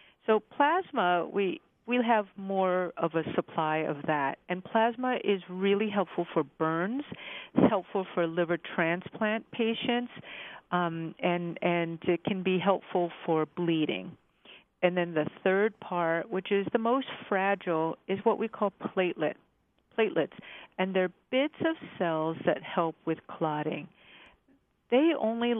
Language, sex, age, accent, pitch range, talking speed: English, female, 50-69, American, 170-215 Hz, 140 wpm